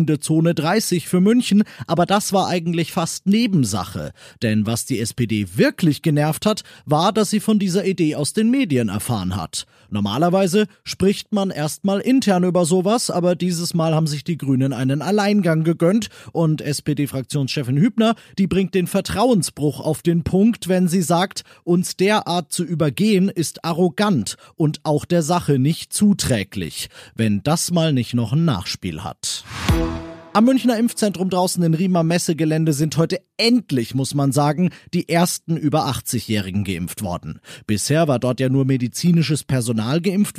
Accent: German